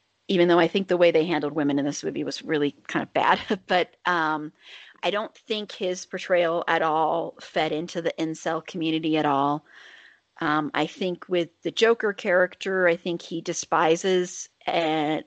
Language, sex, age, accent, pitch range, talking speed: English, female, 30-49, American, 160-180 Hz, 175 wpm